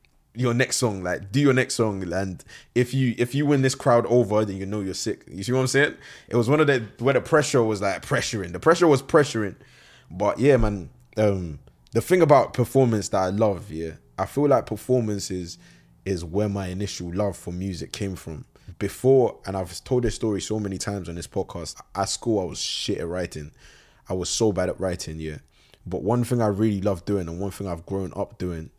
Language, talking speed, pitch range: English, 225 wpm, 90-120 Hz